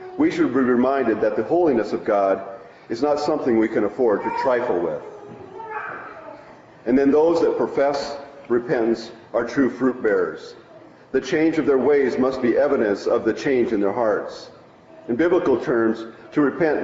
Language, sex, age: English, male, 50-69